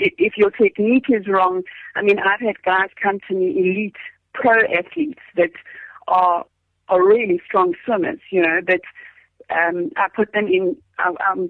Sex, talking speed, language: female, 160 wpm, English